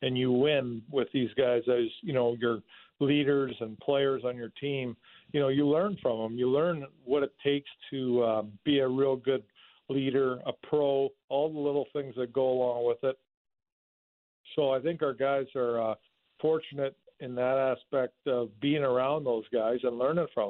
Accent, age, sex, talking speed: American, 50-69, male, 185 wpm